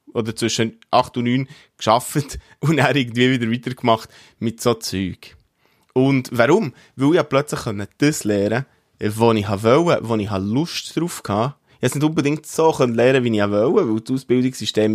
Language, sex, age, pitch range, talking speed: German, male, 20-39, 110-135 Hz, 170 wpm